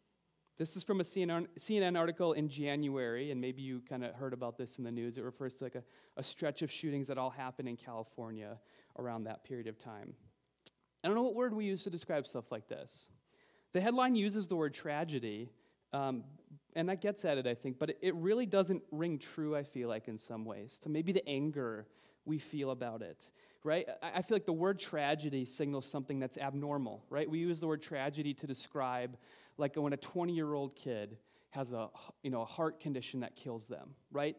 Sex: male